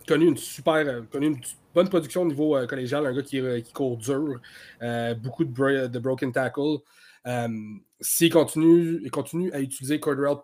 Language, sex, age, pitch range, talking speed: French, male, 30-49, 130-160 Hz, 190 wpm